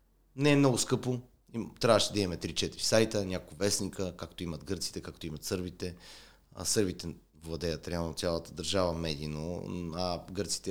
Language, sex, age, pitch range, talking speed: Bulgarian, male, 30-49, 85-115 Hz, 145 wpm